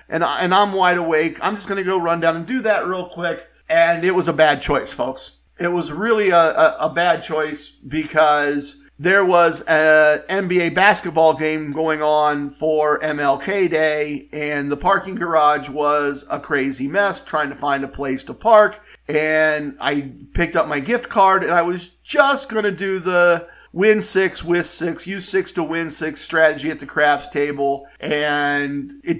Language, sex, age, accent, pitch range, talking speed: English, male, 50-69, American, 150-185 Hz, 185 wpm